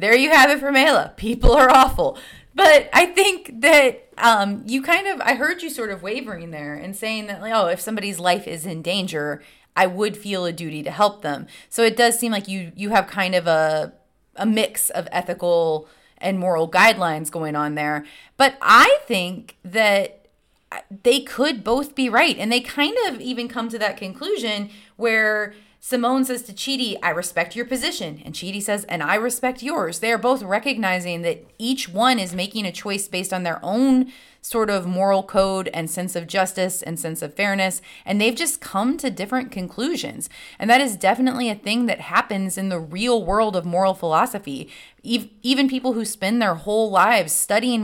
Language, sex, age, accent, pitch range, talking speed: English, female, 30-49, American, 180-240 Hz, 195 wpm